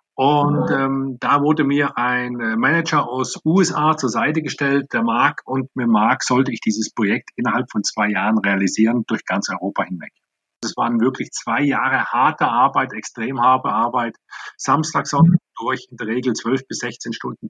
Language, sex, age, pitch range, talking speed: German, male, 50-69, 120-155 Hz, 170 wpm